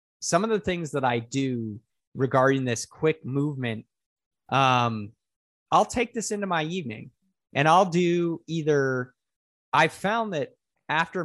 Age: 30-49